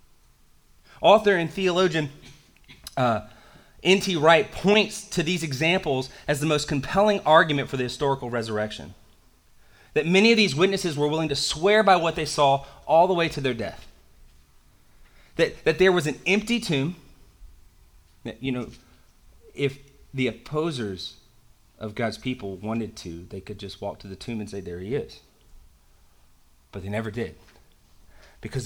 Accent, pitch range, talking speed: American, 95-140 Hz, 155 wpm